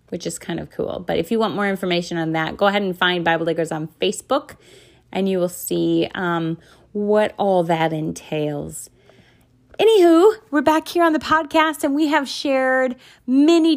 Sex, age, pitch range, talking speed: female, 30-49, 185-280 Hz, 185 wpm